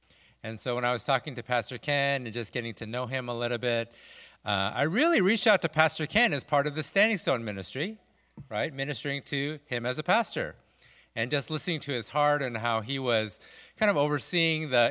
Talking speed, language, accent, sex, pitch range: 215 wpm, English, American, male, 115-155 Hz